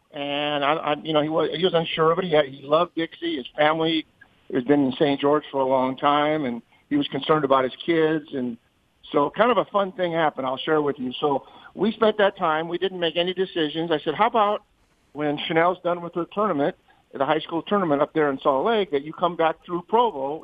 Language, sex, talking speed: English, male, 240 wpm